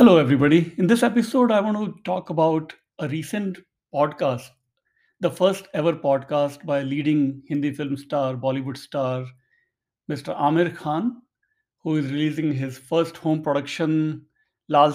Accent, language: Indian, English